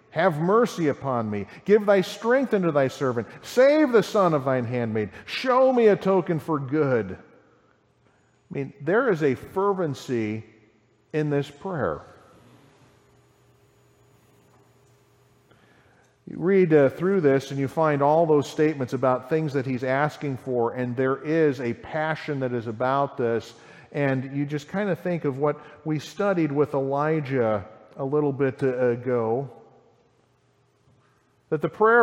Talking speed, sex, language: 140 wpm, male, English